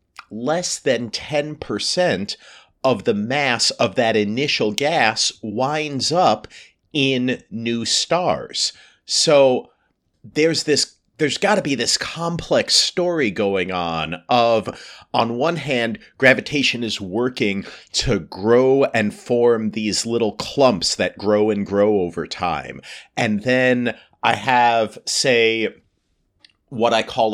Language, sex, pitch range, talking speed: English, male, 105-130 Hz, 120 wpm